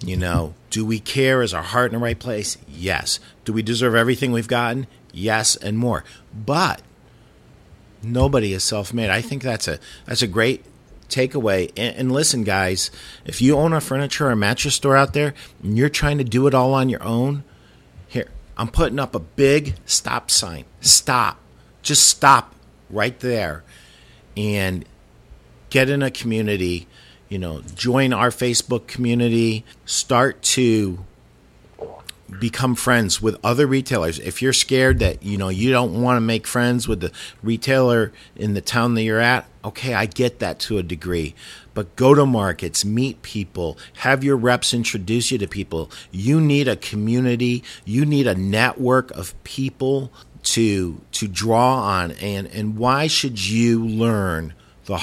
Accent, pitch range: American, 100-130 Hz